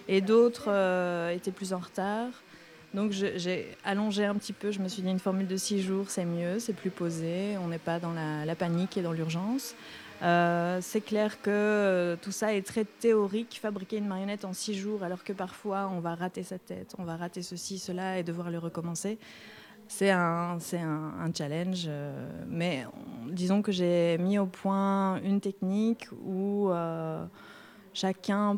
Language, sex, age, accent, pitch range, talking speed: French, female, 20-39, French, 175-210 Hz, 190 wpm